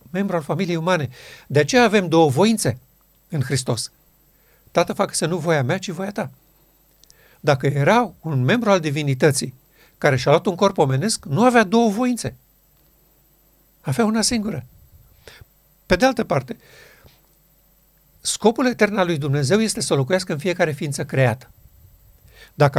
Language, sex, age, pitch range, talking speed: Romanian, male, 60-79, 135-185 Hz, 145 wpm